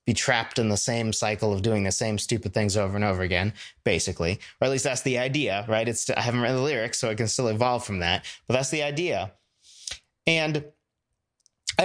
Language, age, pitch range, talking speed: English, 30-49, 125-170 Hz, 220 wpm